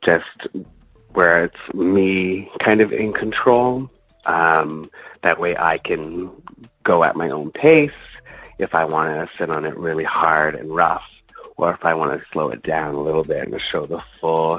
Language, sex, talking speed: English, male, 180 wpm